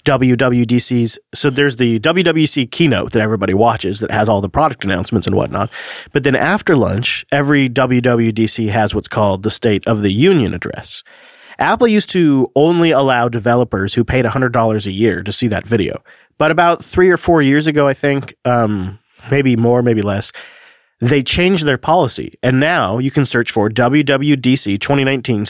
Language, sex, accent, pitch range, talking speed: English, male, American, 115-145 Hz, 170 wpm